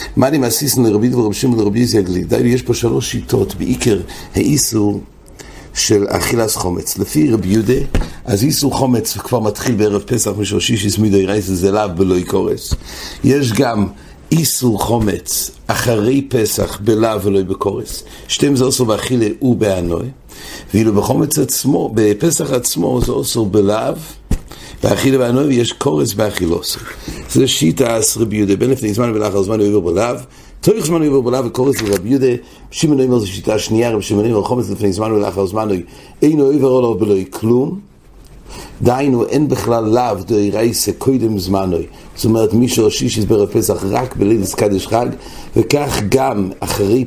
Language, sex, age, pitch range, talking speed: English, male, 60-79, 100-125 Hz, 105 wpm